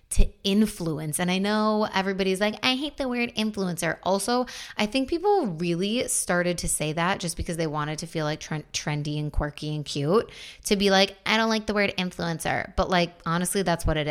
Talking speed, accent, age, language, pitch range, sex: 205 wpm, American, 20-39, English, 165-195 Hz, female